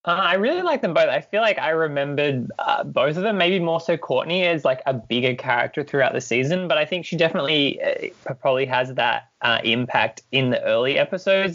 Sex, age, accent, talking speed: male, 20-39, Australian, 220 wpm